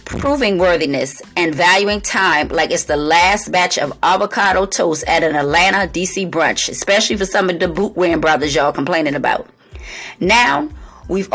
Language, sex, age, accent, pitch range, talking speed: English, female, 30-49, American, 165-210 Hz, 160 wpm